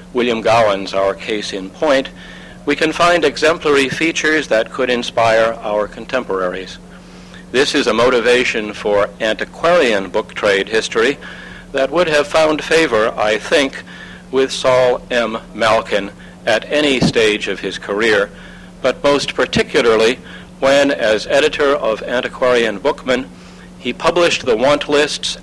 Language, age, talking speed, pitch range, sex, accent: English, 60-79, 130 wpm, 105-155 Hz, male, American